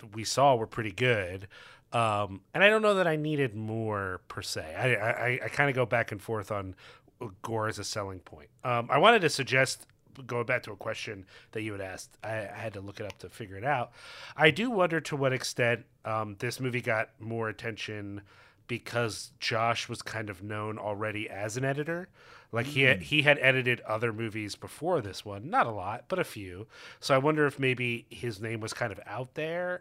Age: 30-49